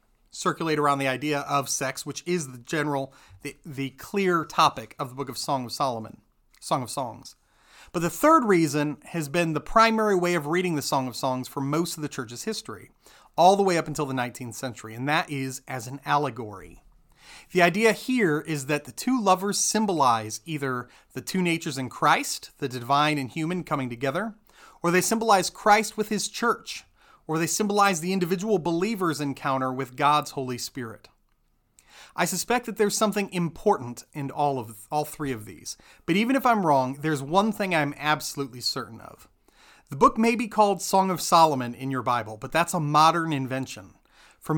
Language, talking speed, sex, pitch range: English, 190 wpm, male, 135-185 Hz